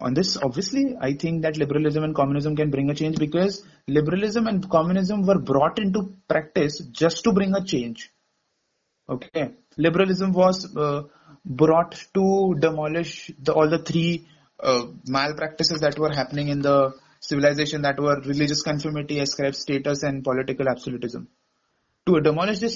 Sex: male